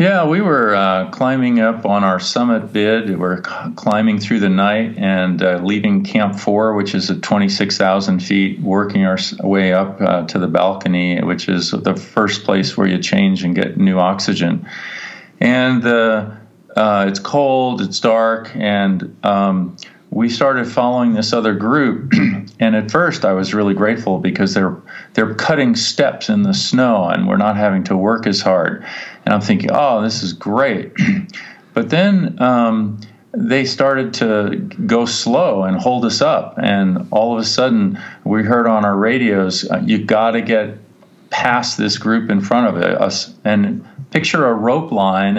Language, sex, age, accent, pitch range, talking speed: English, male, 40-59, American, 100-130 Hz, 170 wpm